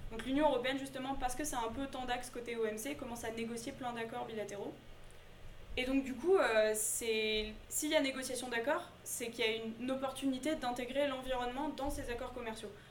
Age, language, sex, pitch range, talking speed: 20-39, French, female, 215-260 Hz, 185 wpm